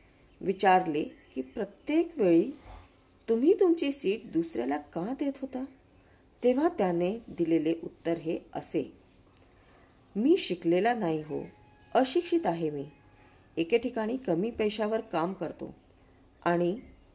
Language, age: Hindi, 40-59